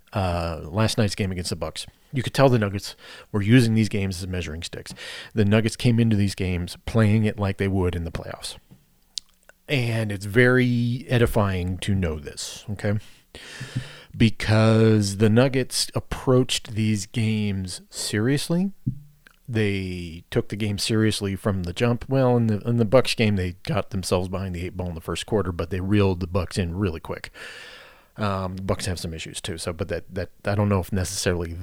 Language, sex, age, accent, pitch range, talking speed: English, male, 30-49, American, 95-110 Hz, 185 wpm